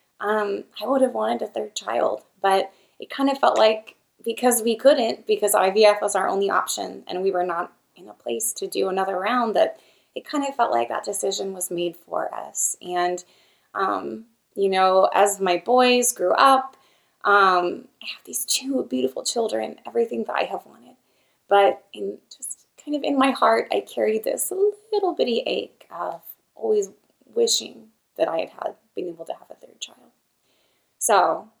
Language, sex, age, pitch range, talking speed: English, female, 20-39, 190-270 Hz, 180 wpm